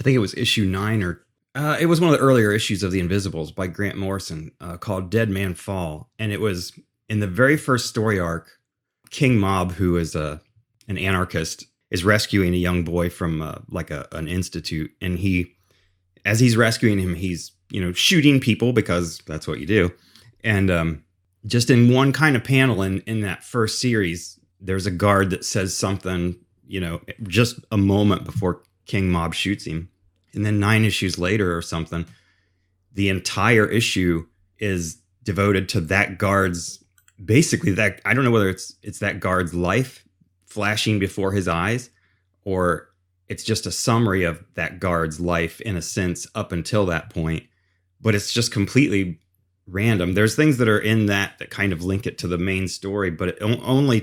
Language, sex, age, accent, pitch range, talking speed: English, male, 30-49, American, 90-110 Hz, 185 wpm